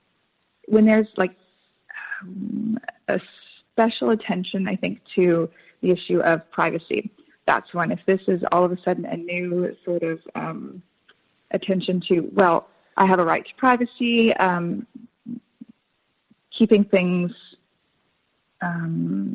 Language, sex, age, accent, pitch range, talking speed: English, female, 20-39, American, 170-215 Hz, 125 wpm